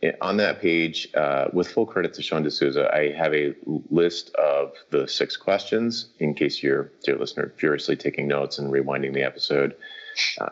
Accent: American